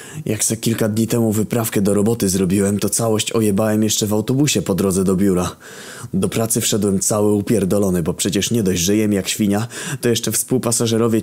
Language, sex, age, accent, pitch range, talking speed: Polish, male, 20-39, native, 90-110 Hz, 185 wpm